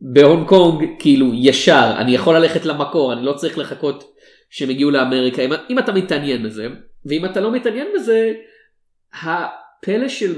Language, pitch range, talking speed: Hebrew, 130-190 Hz, 155 wpm